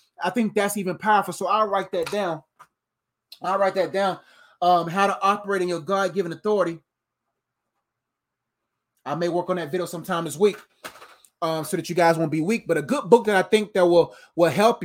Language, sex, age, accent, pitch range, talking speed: English, male, 20-39, American, 165-200 Hz, 205 wpm